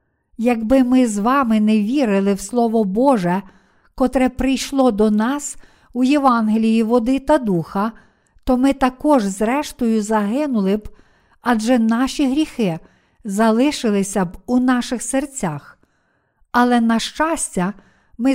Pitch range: 220-270 Hz